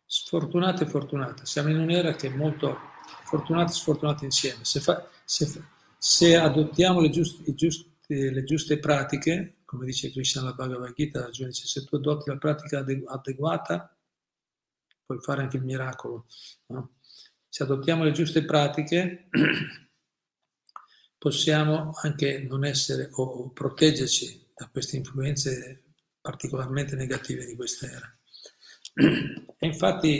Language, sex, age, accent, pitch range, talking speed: Italian, male, 50-69, native, 130-155 Hz, 125 wpm